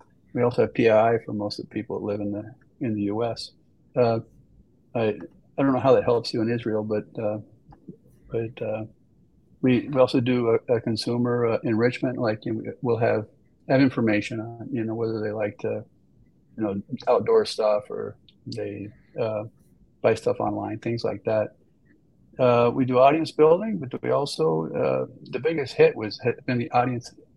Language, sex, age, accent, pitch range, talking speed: English, male, 50-69, American, 105-125 Hz, 180 wpm